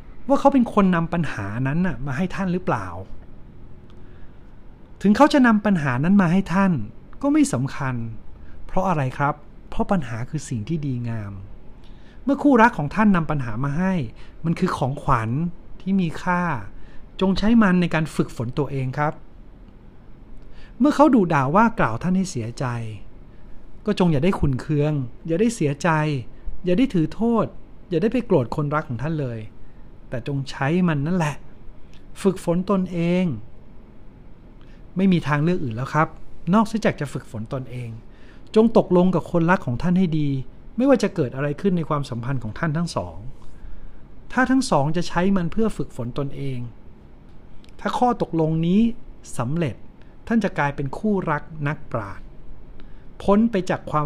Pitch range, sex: 125-185 Hz, male